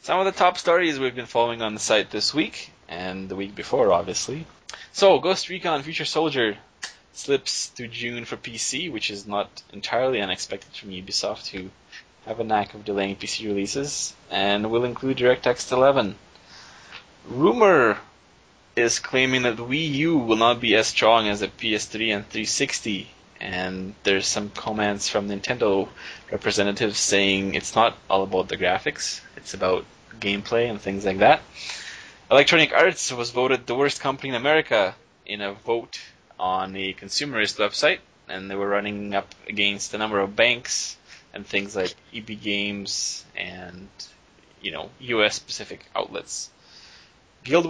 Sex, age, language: male, 20-39, English